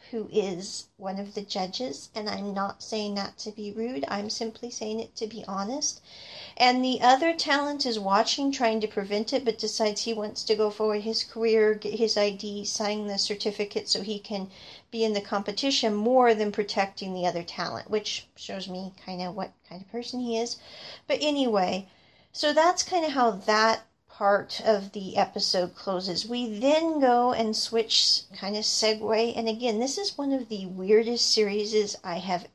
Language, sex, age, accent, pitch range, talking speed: English, female, 40-59, American, 200-240 Hz, 190 wpm